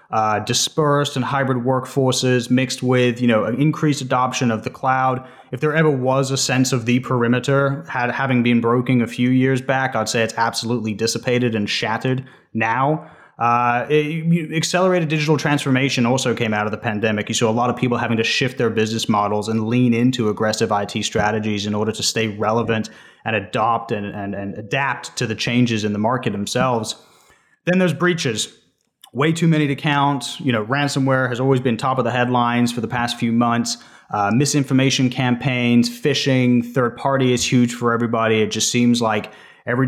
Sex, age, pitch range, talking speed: male, 30-49, 115-135 Hz, 190 wpm